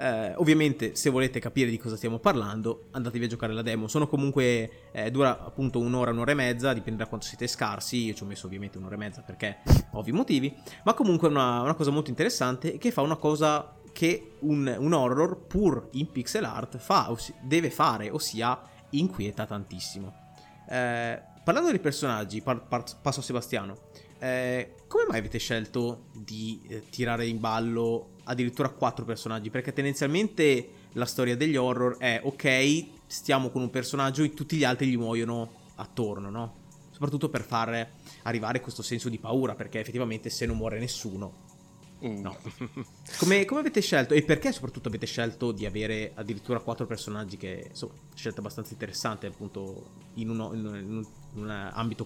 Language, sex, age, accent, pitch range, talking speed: Italian, male, 20-39, native, 110-140 Hz, 175 wpm